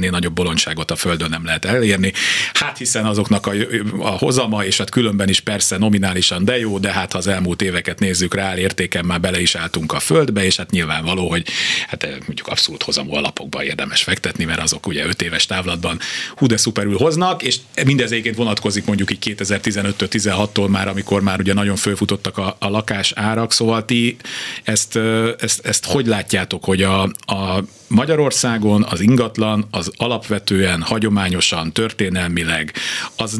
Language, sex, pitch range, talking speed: Hungarian, male, 95-115 Hz, 160 wpm